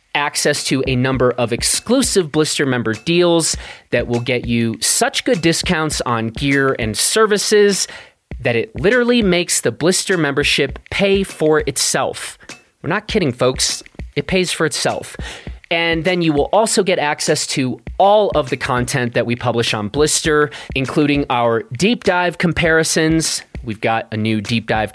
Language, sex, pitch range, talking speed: English, male, 120-180 Hz, 160 wpm